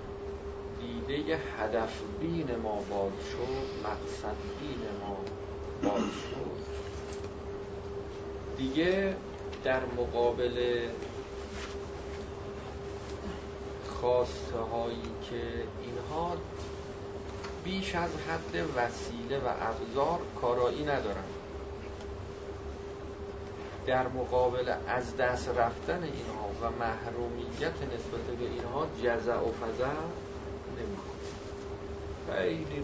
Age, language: 40-59, Persian